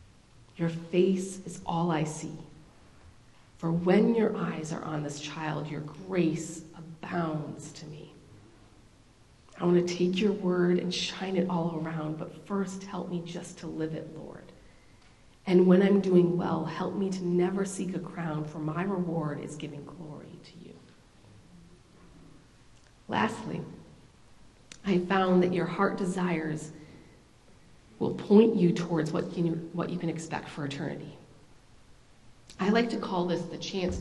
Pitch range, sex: 155-185 Hz, female